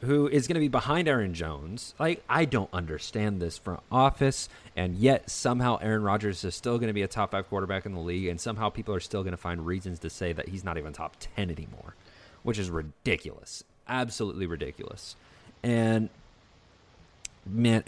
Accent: American